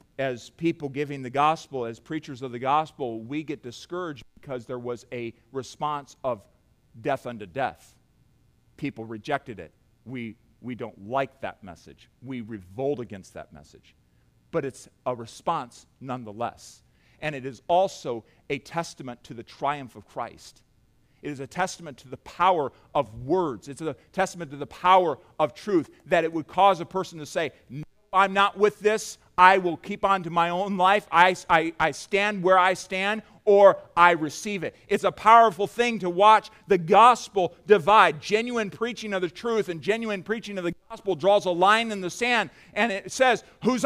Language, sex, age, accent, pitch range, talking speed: English, male, 40-59, American, 145-230 Hz, 180 wpm